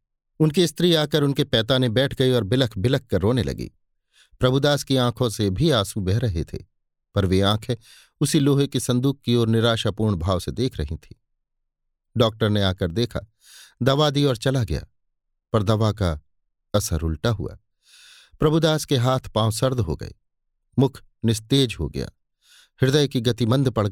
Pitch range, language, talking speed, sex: 100-130 Hz, Hindi, 170 wpm, male